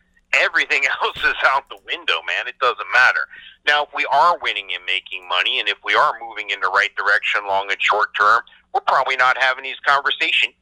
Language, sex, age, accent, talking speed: English, male, 50-69, American, 210 wpm